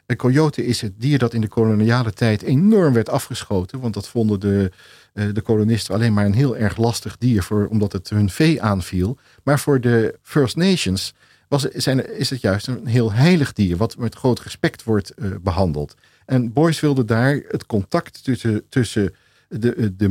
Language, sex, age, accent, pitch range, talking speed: Dutch, male, 50-69, Dutch, 105-130 Hz, 180 wpm